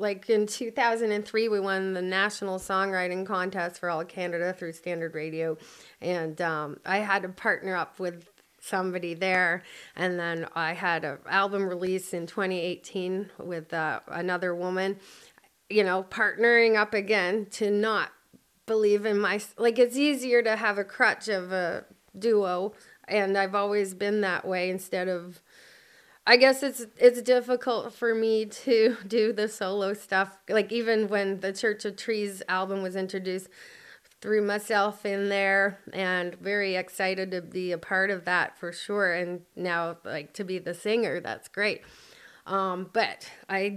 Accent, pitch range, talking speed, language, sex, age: American, 180-210 Hz, 160 wpm, English, female, 30-49